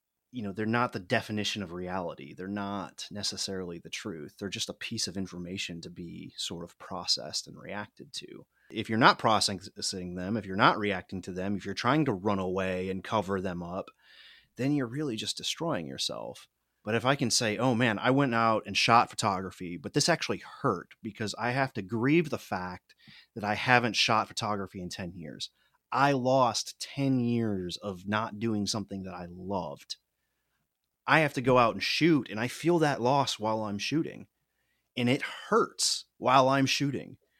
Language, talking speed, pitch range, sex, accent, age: English, 190 wpm, 100-130 Hz, male, American, 30-49